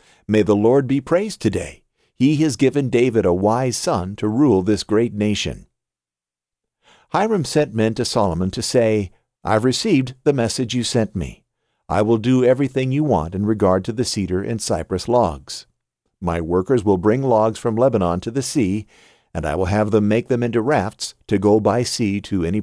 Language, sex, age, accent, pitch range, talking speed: English, male, 50-69, American, 90-115 Hz, 190 wpm